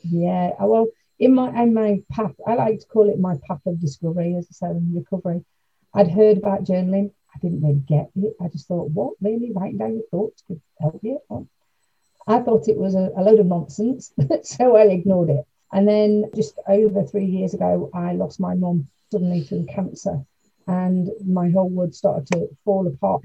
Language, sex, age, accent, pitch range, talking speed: English, female, 40-59, British, 175-215 Hz, 200 wpm